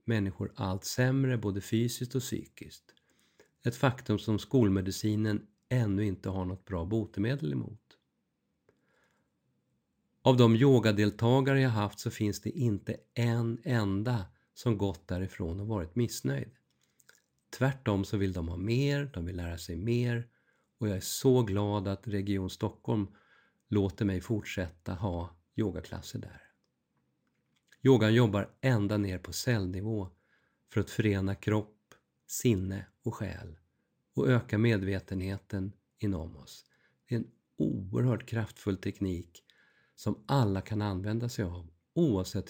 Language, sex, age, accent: Swedish, male, 50-69, native